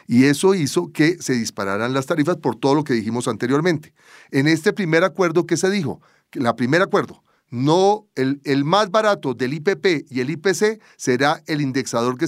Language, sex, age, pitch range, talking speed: English, male, 40-59, 135-190 Hz, 185 wpm